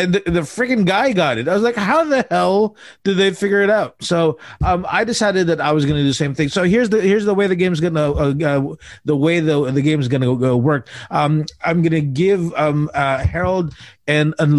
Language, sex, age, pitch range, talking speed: English, male, 30-49, 135-165 Hz, 255 wpm